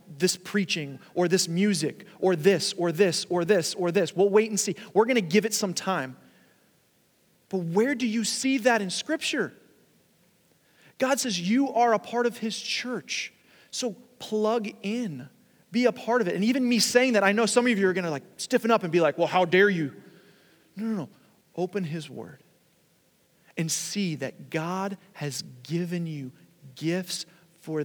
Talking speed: 185 wpm